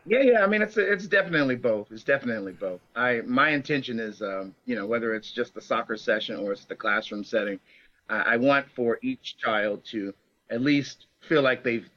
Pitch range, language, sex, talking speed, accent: 105-125 Hz, English, male, 205 wpm, American